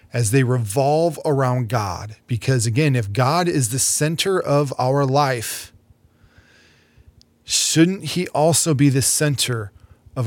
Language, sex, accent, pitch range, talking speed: English, male, American, 120-145 Hz, 130 wpm